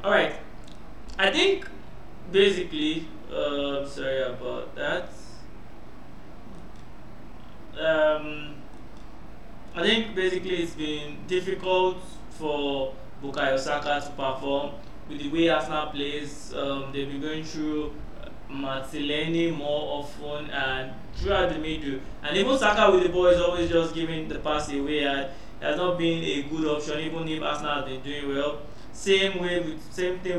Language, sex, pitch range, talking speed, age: English, male, 140-170 Hz, 140 wpm, 20-39